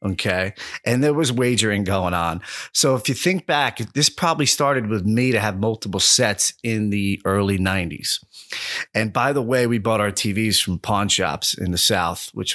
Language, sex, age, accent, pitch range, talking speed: English, male, 30-49, American, 95-125 Hz, 190 wpm